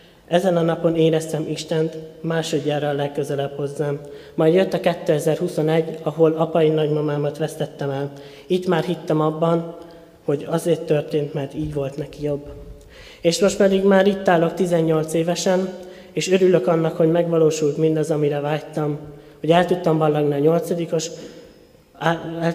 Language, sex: Hungarian, male